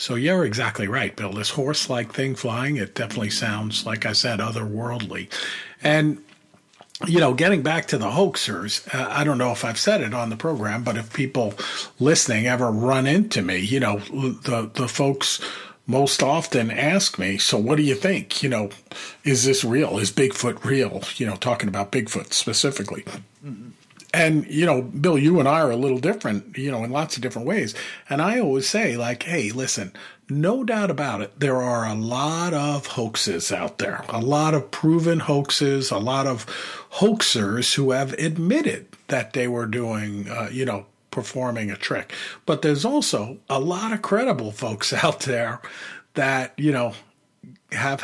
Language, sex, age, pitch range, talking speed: English, male, 50-69, 110-150 Hz, 180 wpm